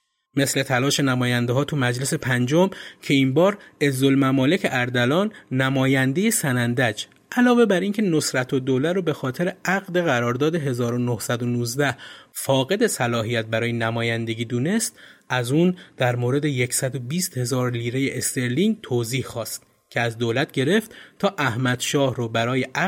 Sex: male